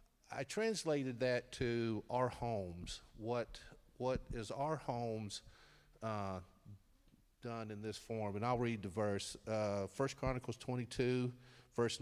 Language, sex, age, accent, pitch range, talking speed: English, male, 50-69, American, 105-130 Hz, 130 wpm